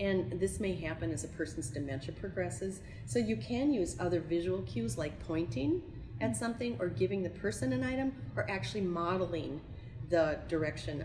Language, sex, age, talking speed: English, female, 40-59, 170 wpm